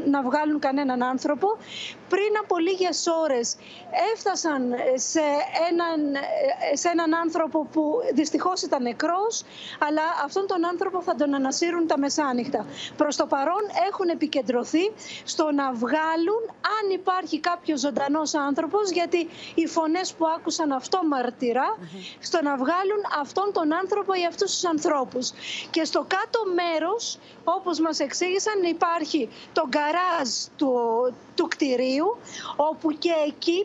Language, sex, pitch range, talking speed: Greek, female, 285-370 Hz, 130 wpm